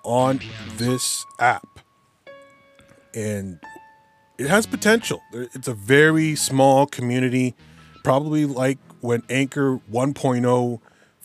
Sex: male